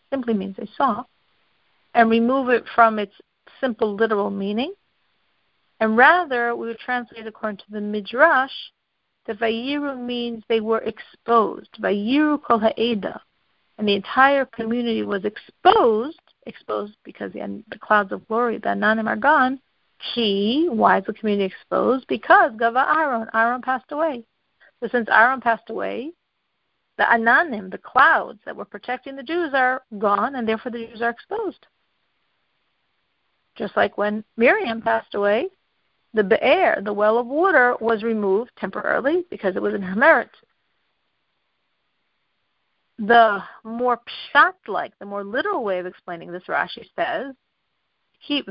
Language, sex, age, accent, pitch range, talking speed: English, female, 50-69, American, 215-265 Hz, 140 wpm